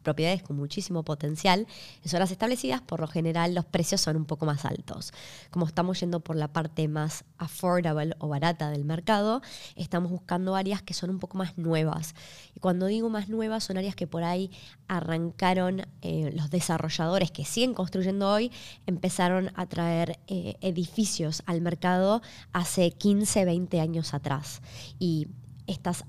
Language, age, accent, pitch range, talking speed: Spanish, 20-39, Argentinian, 155-185 Hz, 160 wpm